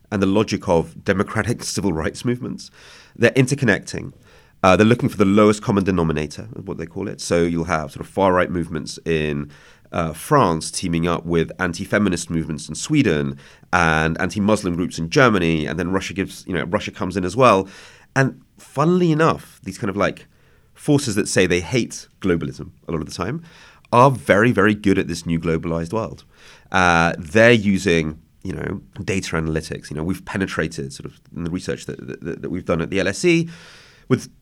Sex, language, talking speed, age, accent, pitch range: male, English, 185 wpm, 30-49, British, 80-105 Hz